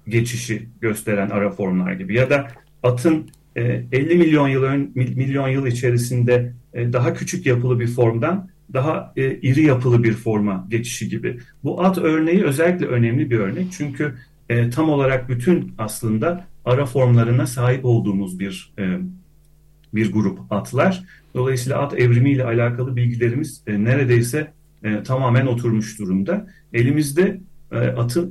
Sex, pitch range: male, 120-150 Hz